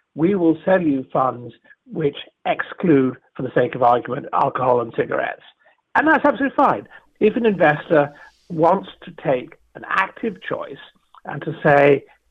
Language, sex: English, male